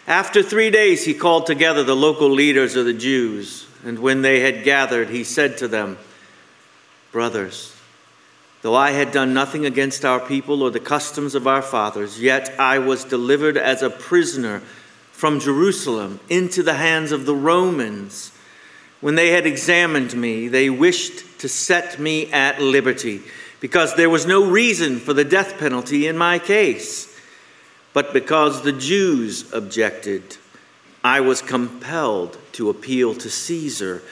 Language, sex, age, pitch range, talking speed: English, male, 50-69, 125-175 Hz, 155 wpm